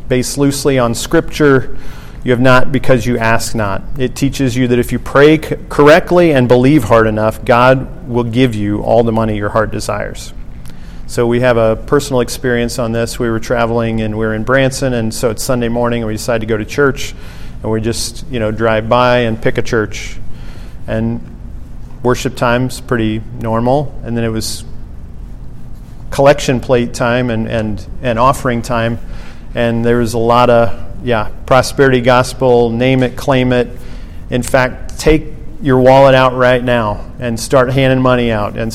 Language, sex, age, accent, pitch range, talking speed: English, male, 40-59, American, 110-130 Hz, 180 wpm